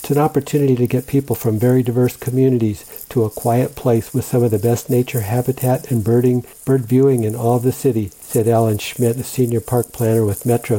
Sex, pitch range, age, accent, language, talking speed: male, 115-130 Hz, 60-79, American, English, 215 wpm